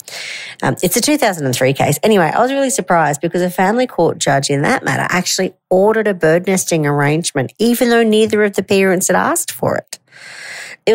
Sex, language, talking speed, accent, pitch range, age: female, English, 190 wpm, Australian, 145-205 Hz, 40-59